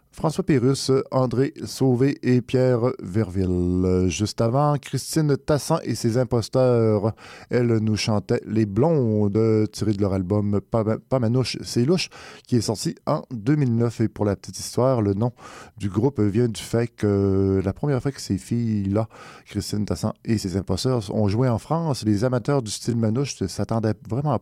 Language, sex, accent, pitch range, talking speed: French, male, French, 100-125 Hz, 170 wpm